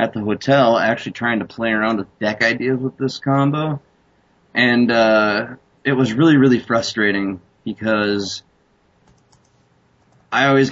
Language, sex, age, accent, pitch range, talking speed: English, male, 30-49, American, 105-125 Hz, 135 wpm